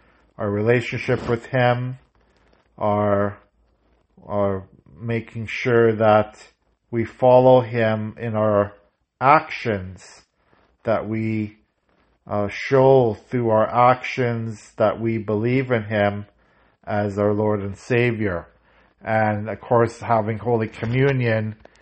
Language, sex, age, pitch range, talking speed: English, male, 40-59, 105-125 Hz, 100 wpm